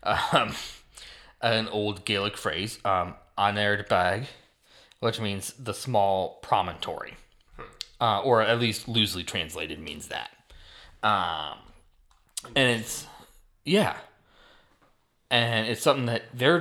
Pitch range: 90-115 Hz